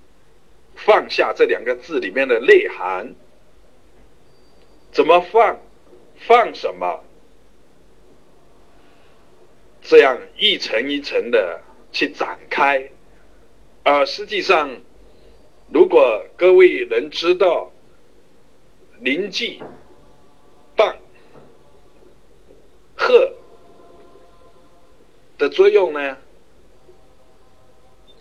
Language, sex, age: Chinese, male, 60-79